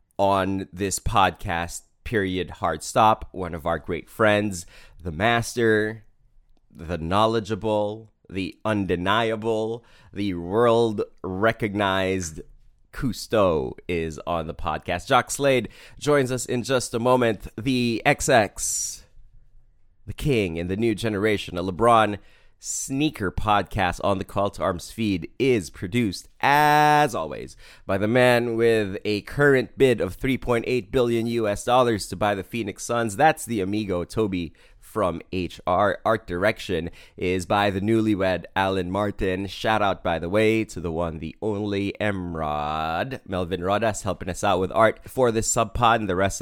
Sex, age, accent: male, 30-49, American